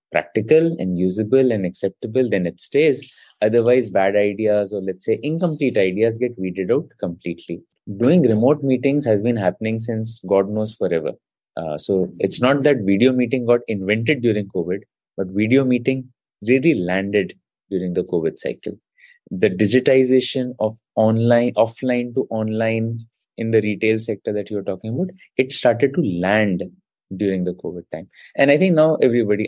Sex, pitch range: male, 105-130 Hz